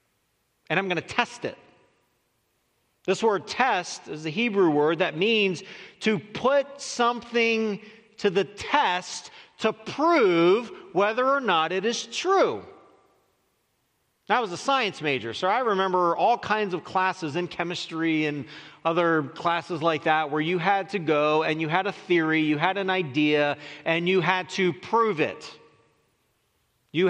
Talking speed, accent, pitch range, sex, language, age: 155 wpm, American, 170-250 Hz, male, English, 40-59